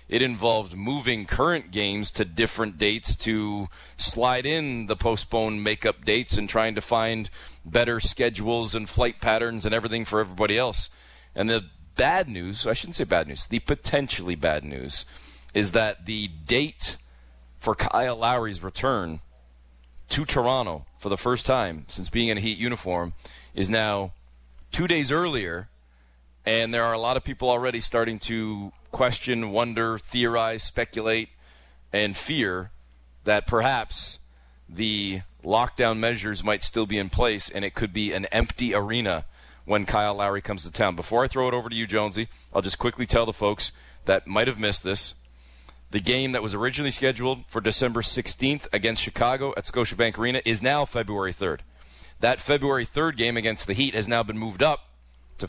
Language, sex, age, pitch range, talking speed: English, male, 30-49, 85-115 Hz, 170 wpm